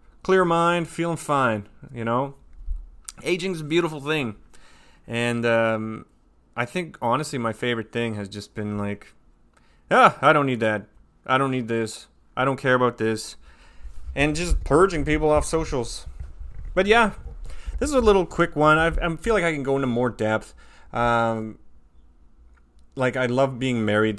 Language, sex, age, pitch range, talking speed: English, male, 30-49, 100-130 Hz, 165 wpm